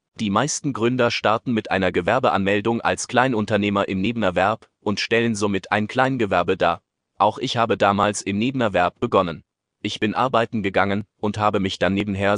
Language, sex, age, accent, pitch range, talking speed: German, male, 30-49, German, 100-115 Hz, 160 wpm